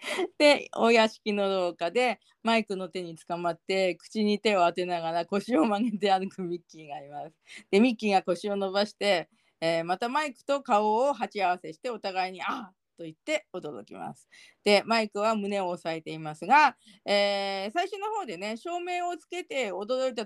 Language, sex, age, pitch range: Japanese, female, 40-59, 185-240 Hz